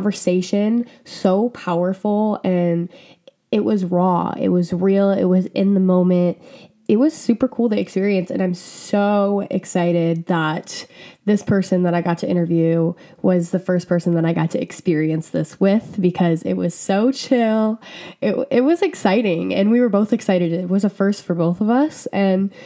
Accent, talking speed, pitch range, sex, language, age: American, 175 wpm, 175-210 Hz, female, English, 20-39